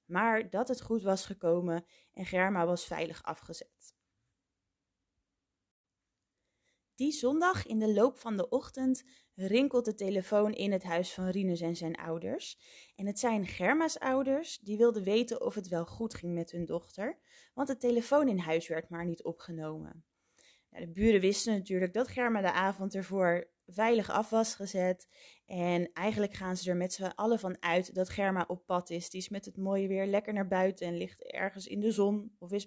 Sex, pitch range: female, 175-220 Hz